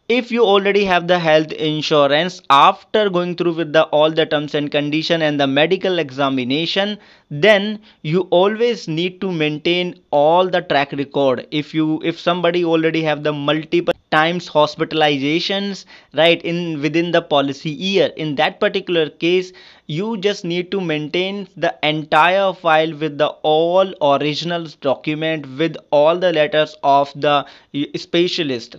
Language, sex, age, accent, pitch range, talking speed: English, male, 20-39, Indian, 150-180 Hz, 150 wpm